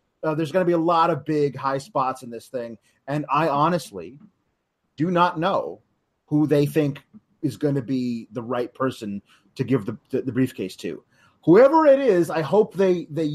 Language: English